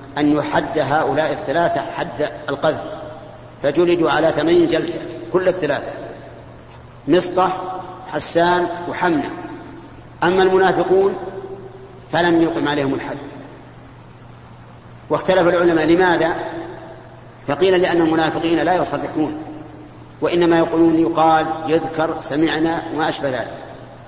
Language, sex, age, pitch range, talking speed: Arabic, male, 50-69, 150-175 Hz, 90 wpm